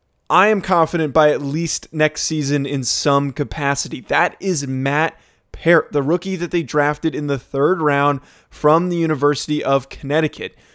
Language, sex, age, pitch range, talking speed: English, male, 20-39, 140-175 Hz, 160 wpm